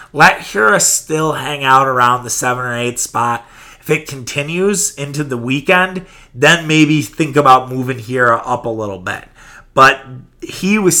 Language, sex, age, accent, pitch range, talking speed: English, male, 30-49, American, 125-155 Hz, 165 wpm